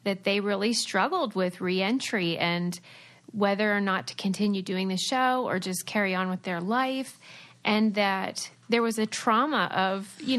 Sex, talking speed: female, 180 wpm